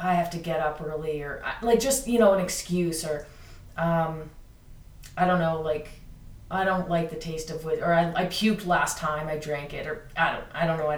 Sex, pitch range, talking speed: female, 155-190 Hz, 230 wpm